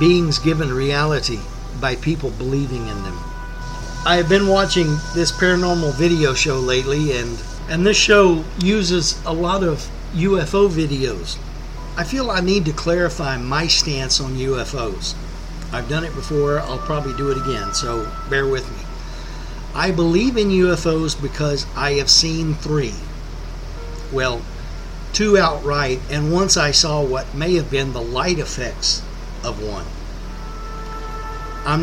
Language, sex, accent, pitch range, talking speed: English, male, American, 130-170 Hz, 145 wpm